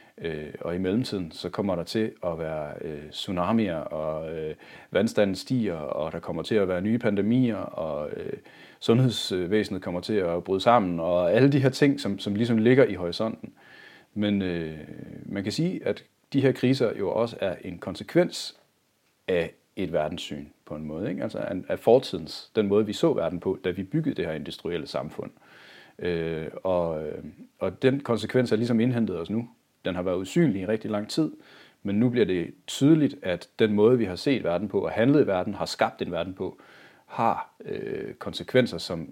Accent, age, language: native, 40-59, Danish